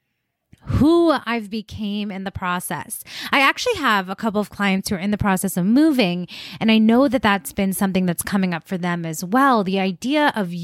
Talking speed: 210 wpm